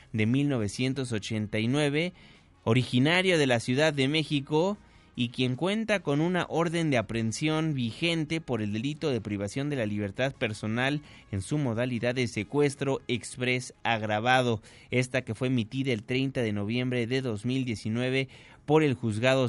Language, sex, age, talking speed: Spanish, male, 30-49, 140 wpm